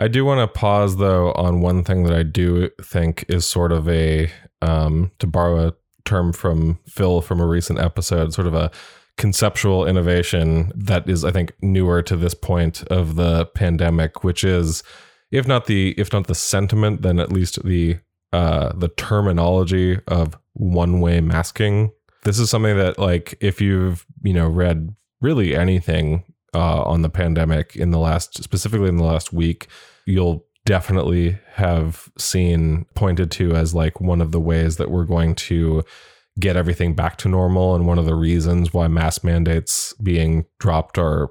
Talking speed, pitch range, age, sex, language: 175 wpm, 85-95 Hz, 20-39, male, English